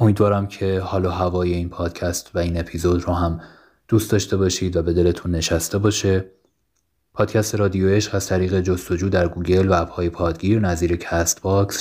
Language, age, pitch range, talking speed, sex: Persian, 30-49, 90-105 Hz, 170 wpm, male